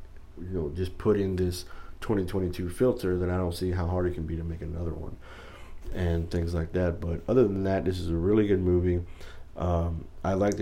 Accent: American